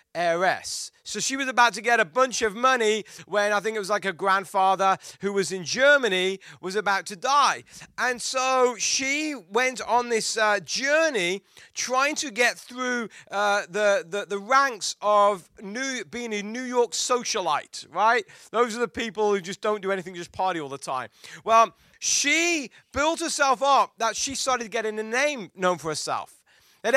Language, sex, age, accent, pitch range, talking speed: English, male, 30-49, British, 205-255 Hz, 180 wpm